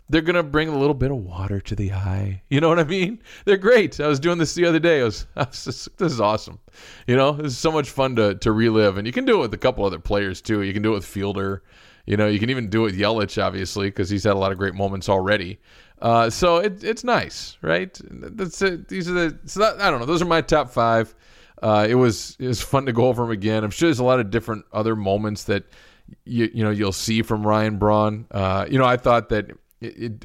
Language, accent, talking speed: English, American, 270 wpm